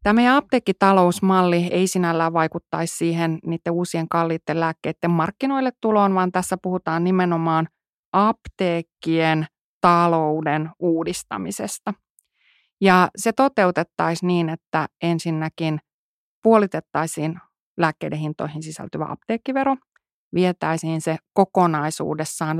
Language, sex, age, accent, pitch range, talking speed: Finnish, female, 30-49, native, 160-195 Hz, 90 wpm